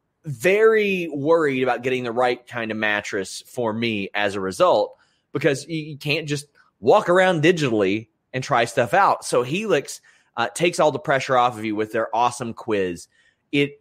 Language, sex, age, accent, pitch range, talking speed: English, male, 30-49, American, 110-140 Hz, 175 wpm